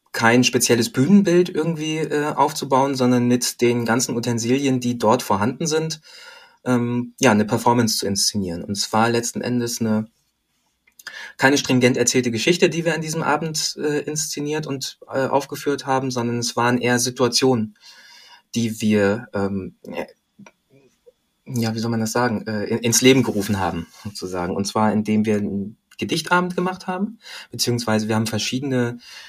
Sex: male